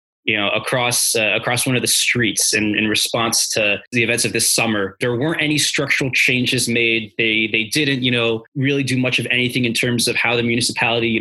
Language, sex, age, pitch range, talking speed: English, male, 20-39, 110-130 Hz, 220 wpm